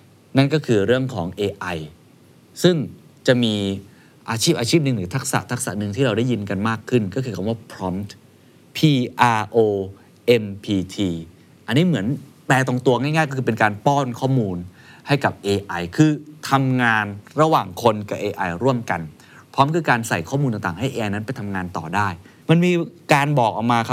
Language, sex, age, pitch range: Thai, male, 20-39, 105-135 Hz